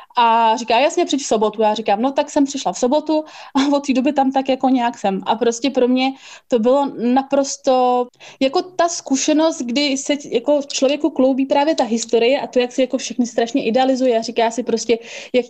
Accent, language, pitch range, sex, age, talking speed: native, Czech, 225-260 Hz, female, 20-39, 210 wpm